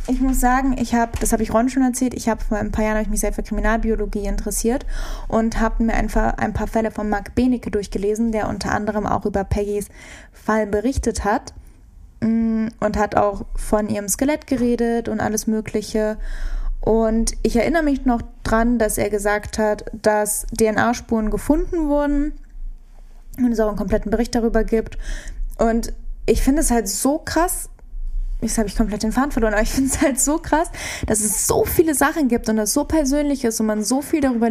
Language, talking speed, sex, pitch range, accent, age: German, 195 wpm, female, 215-240 Hz, German, 10-29